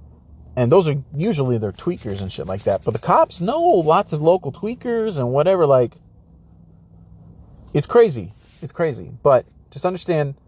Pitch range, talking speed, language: 110-145 Hz, 160 wpm, English